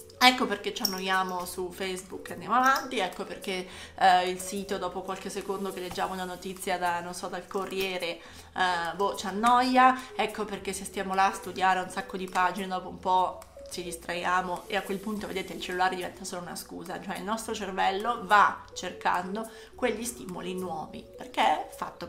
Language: Italian